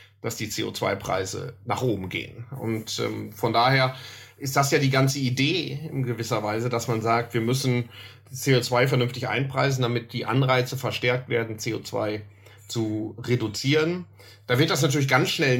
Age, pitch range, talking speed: 30-49, 110-135 Hz, 160 wpm